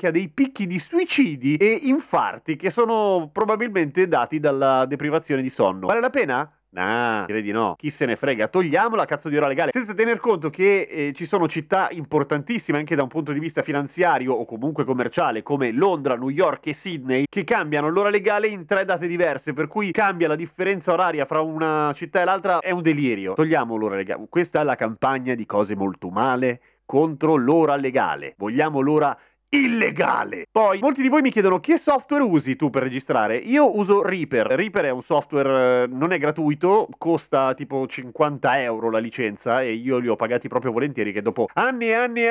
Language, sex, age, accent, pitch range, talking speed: Italian, male, 30-49, native, 130-185 Hz, 195 wpm